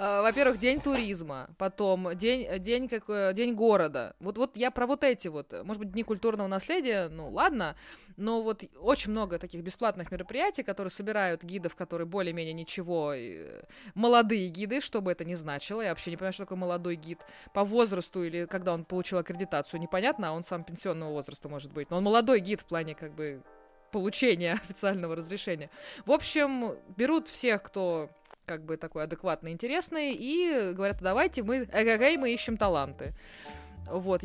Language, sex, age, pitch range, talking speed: Russian, female, 20-39, 175-235 Hz, 165 wpm